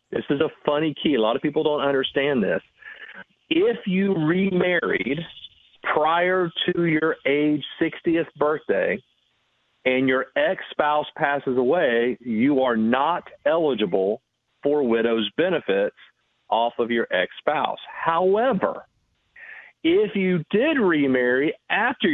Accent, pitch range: American, 120-160 Hz